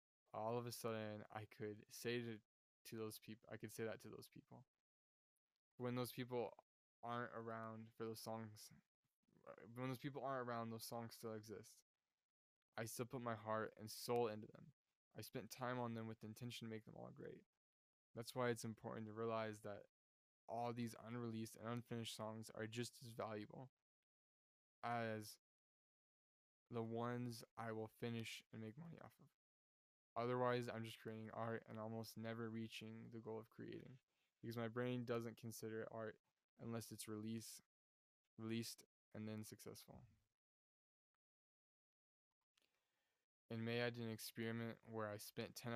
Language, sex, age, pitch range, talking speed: English, male, 10-29, 110-120 Hz, 160 wpm